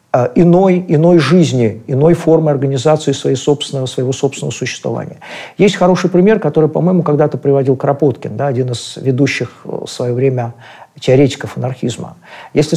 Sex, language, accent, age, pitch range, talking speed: male, Russian, native, 50-69, 140-175 Hz, 135 wpm